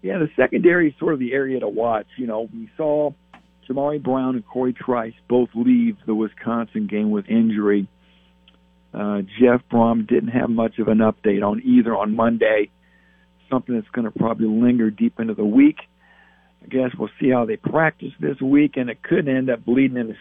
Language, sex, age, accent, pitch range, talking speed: English, male, 60-79, American, 105-145 Hz, 195 wpm